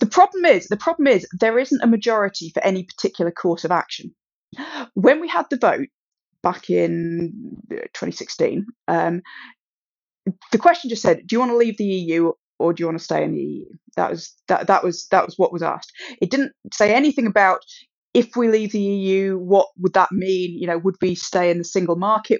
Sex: female